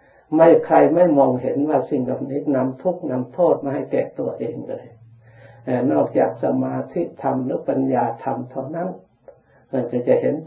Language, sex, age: Thai, male, 60-79